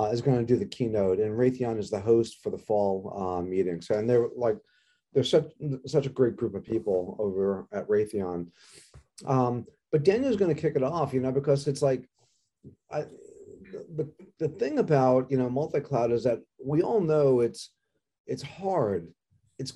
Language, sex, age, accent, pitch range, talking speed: English, male, 40-59, American, 115-155 Hz, 180 wpm